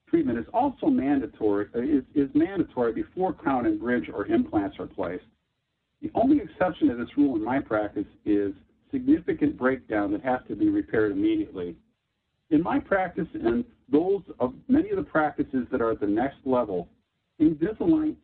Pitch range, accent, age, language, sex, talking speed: 195-320 Hz, American, 50-69, English, male, 165 wpm